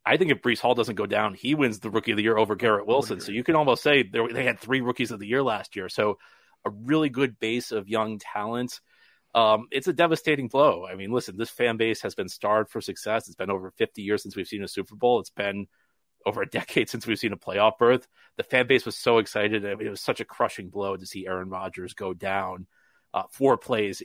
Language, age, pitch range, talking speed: English, 30-49, 105-125 Hz, 250 wpm